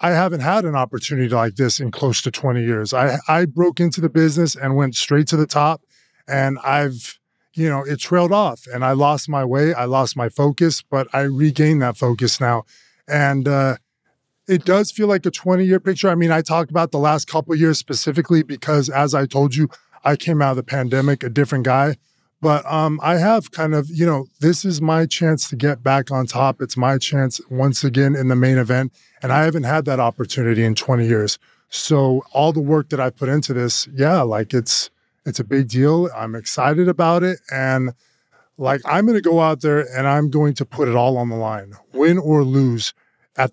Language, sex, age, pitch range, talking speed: English, male, 20-39, 130-155 Hz, 215 wpm